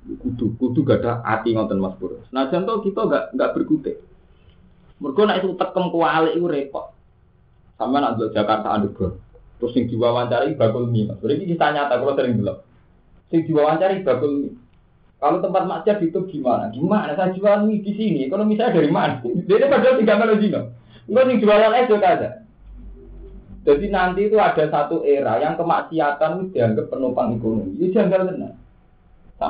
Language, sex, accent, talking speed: Indonesian, male, native, 165 wpm